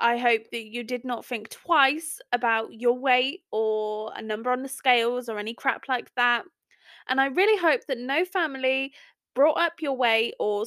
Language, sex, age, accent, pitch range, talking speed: English, female, 20-39, British, 225-295 Hz, 190 wpm